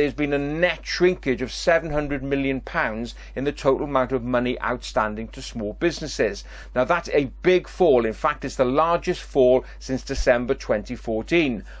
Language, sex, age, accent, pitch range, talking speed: English, male, 40-59, British, 125-155 Hz, 165 wpm